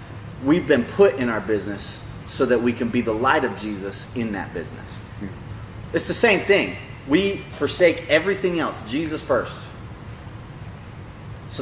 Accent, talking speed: American, 150 wpm